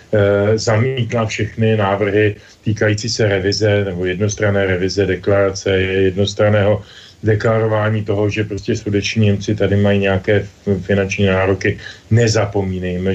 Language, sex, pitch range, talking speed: Slovak, male, 100-115 Hz, 105 wpm